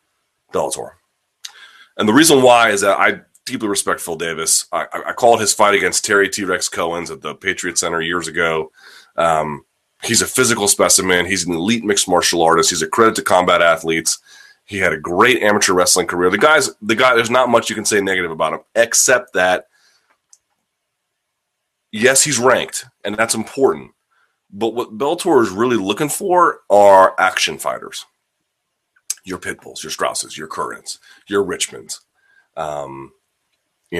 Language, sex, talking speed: English, male, 165 wpm